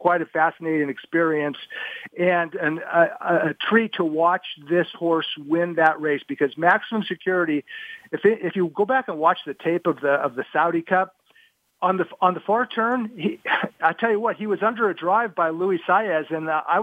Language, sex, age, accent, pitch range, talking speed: English, male, 50-69, American, 160-200 Hz, 205 wpm